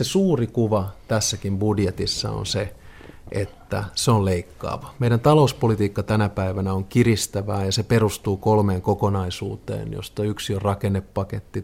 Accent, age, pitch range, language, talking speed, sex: native, 30-49, 100-125 Hz, Finnish, 135 wpm, male